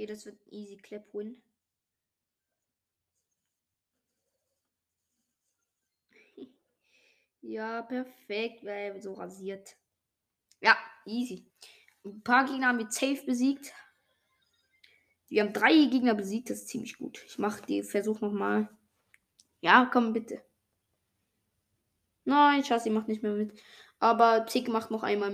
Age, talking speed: 20-39, 120 wpm